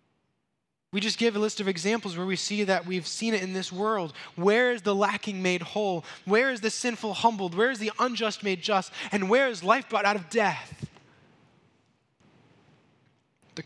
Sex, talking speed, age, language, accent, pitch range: male, 190 wpm, 20-39, English, American, 145-195 Hz